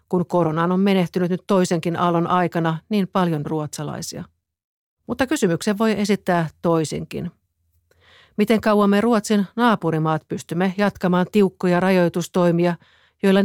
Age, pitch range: 50-69, 160-190 Hz